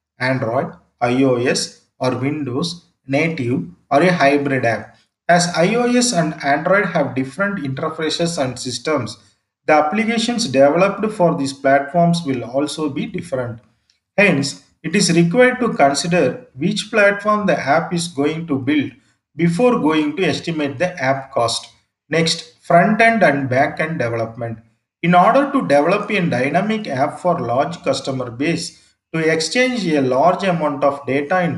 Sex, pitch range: male, 135-180 Hz